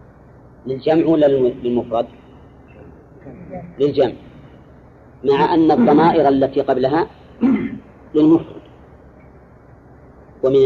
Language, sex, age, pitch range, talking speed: Arabic, female, 40-59, 125-160 Hz, 55 wpm